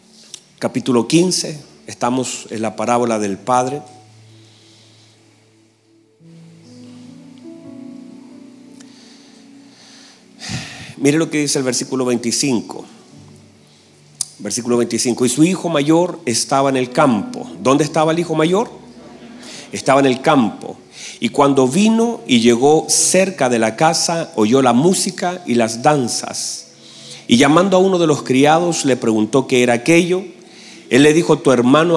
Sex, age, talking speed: male, 40-59, 125 wpm